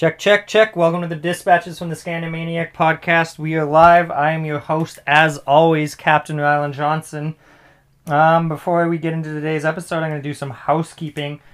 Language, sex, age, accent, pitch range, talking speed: English, male, 20-39, American, 105-150 Hz, 185 wpm